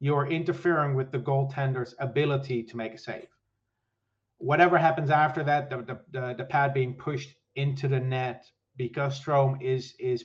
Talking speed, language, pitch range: 165 wpm, English, 120-140 Hz